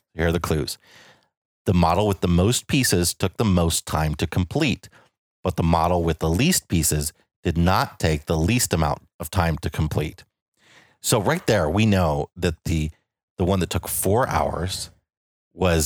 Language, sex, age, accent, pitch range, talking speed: English, male, 30-49, American, 80-100 Hz, 180 wpm